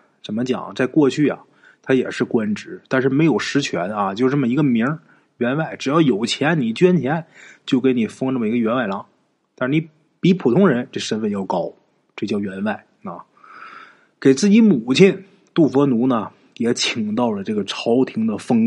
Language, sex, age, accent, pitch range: Chinese, male, 20-39, native, 130-210 Hz